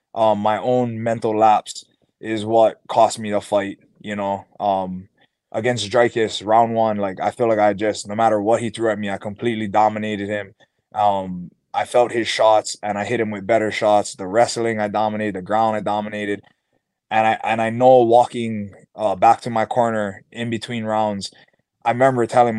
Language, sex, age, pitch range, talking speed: English, male, 20-39, 105-120 Hz, 190 wpm